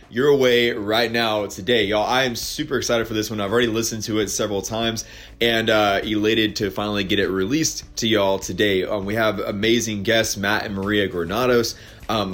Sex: male